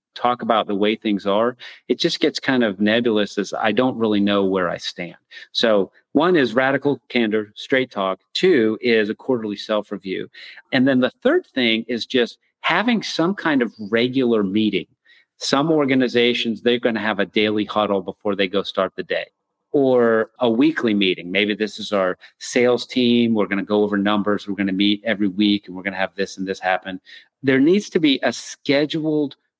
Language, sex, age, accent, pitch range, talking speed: English, male, 40-59, American, 100-125 Hz, 195 wpm